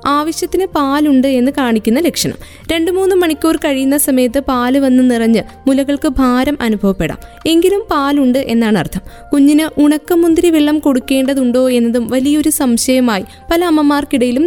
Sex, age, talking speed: female, 20-39, 120 wpm